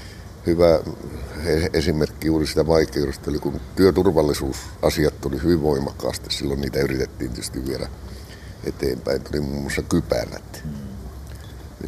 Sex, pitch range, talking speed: male, 75-85 Hz, 110 wpm